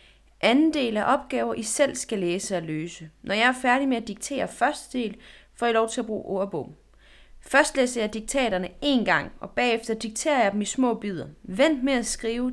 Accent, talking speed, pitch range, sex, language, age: native, 210 wpm, 180-255 Hz, female, Danish, 30-49